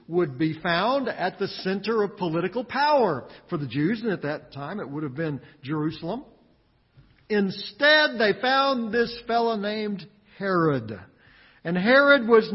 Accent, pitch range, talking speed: American, 180-235 Hz, 150 wpm